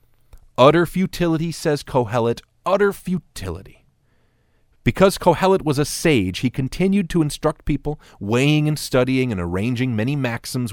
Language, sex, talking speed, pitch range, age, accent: English, male, 130 wpm, 110-155 Hz, 40-59, American